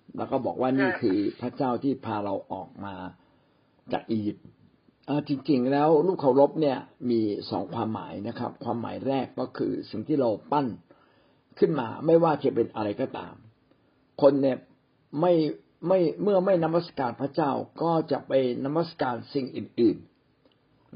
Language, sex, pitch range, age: Thai, male, 120-160 Hz, 60-79